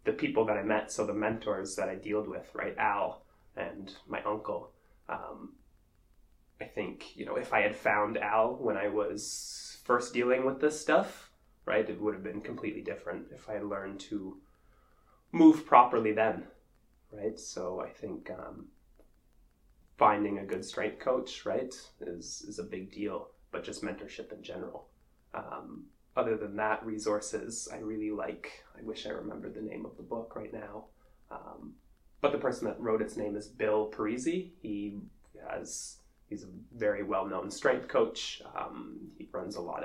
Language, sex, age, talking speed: English, male, 20-39, 170 wpm